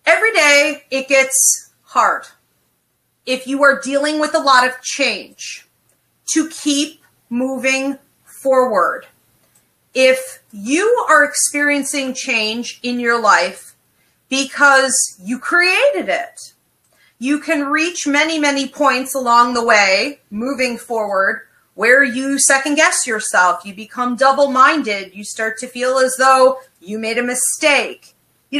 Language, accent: English, American